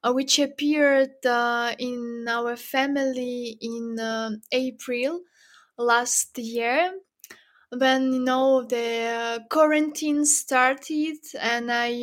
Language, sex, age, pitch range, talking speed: English, female, 20-39, 235-280 Hz, 100 wpm